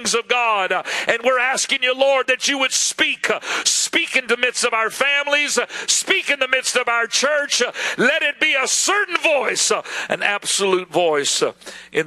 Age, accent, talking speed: 50-69, American, 175 wpm